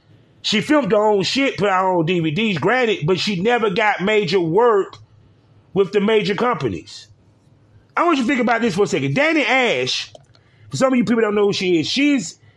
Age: 30-49